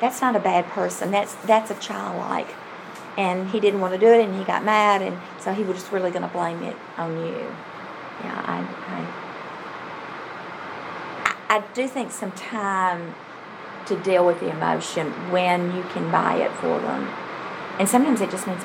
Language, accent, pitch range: English, American, 175-210 Hz